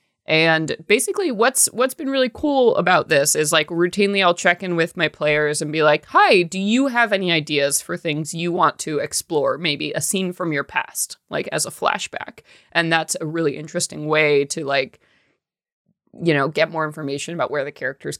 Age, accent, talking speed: 20-39, American, 200 wpm